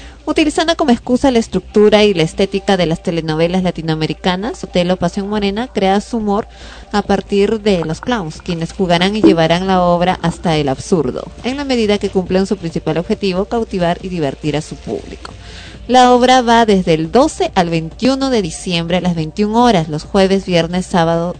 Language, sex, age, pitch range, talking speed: Spanish, female, 30-49, 165-205 Hz, 180 wpm